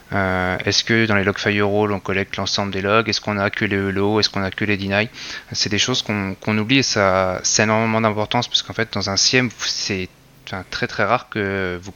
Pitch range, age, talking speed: 95-110 Hz, 20-39, 240 wpm